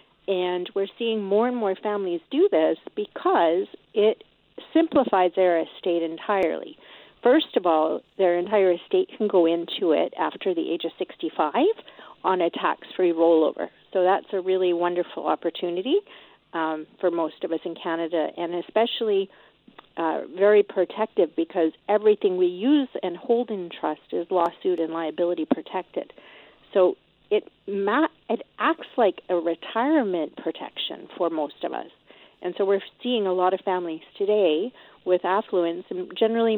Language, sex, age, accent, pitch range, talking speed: English, female, 50-69, American, 170-220 Hz, 150 wpm